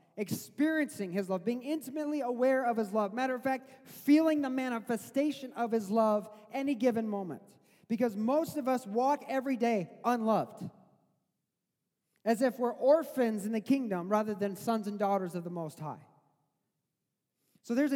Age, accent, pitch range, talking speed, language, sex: 30-49, American, 210-275 Hz, 155 wpm, English, male